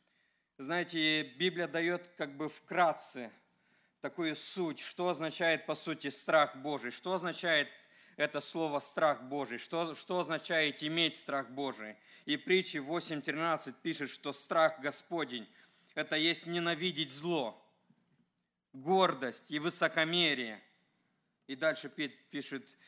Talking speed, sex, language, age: 115 wpm, male, English, 40-59